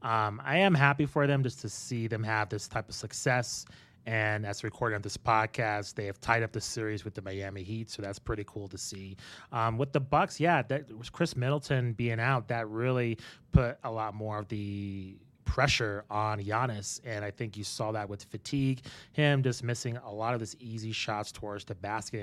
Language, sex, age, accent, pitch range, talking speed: English, male, 30-49, American, 105-125 Hz, 215 wpm